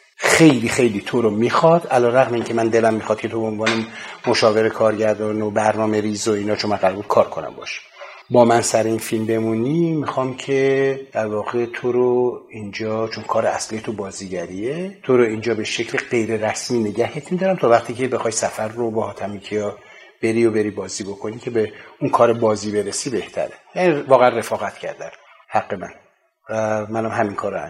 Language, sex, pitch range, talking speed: Persian, male, 110-135 Hz, 180 wpm